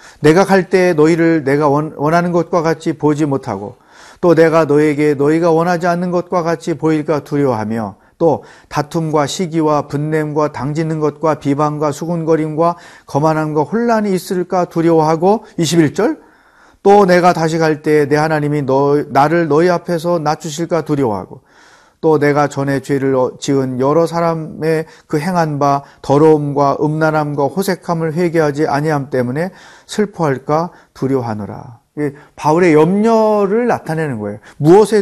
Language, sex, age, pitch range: Korean, male, 40-59, 145-175 Hz